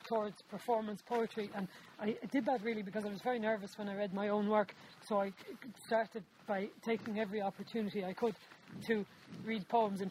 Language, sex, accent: English, female, Irish